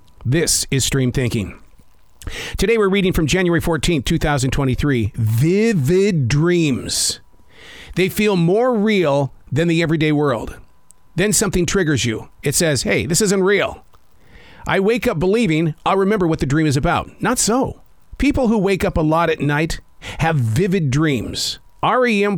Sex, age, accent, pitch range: male, 50-69, American, 130-200 Hz